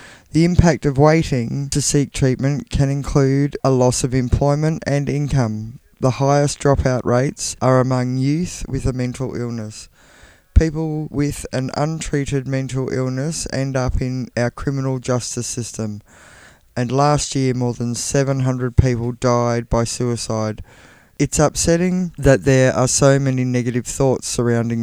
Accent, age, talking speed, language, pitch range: Australian, 20-39, 145 wpm, English, 120-135 Hz